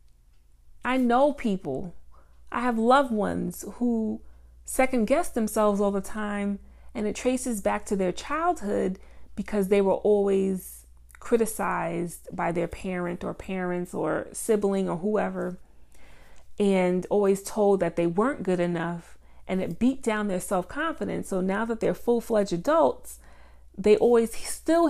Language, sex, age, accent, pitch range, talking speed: English, female, 30-49, American, 165-245 Hz, 135 wpm